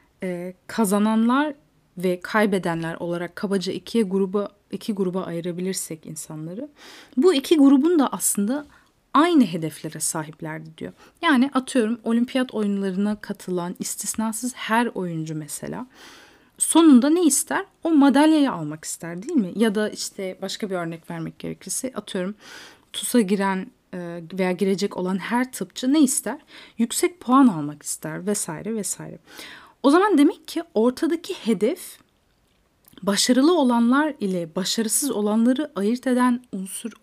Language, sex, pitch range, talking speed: Turkish, female, 185-265 Hz, 125 wpm